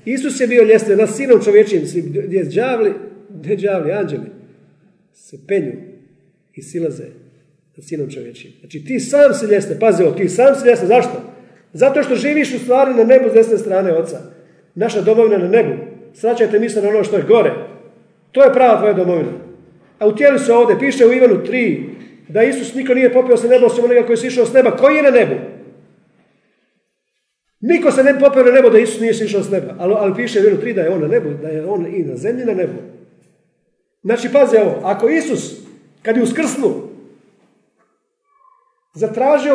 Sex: male